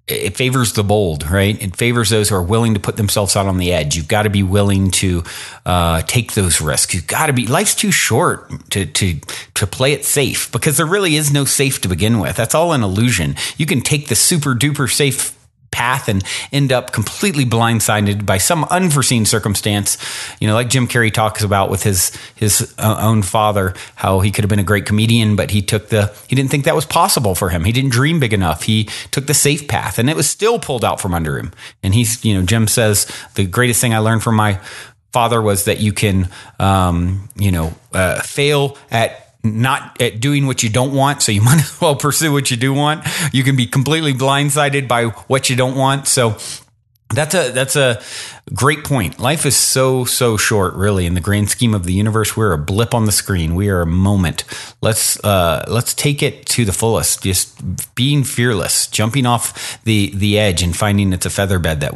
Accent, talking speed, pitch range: American, 220 wpm, 100-130 Hz